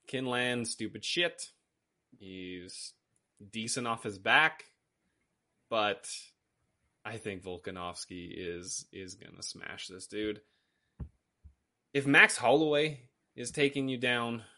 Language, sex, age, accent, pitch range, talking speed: English, male, 20-39, American, 95-120 Hz, 105 wpm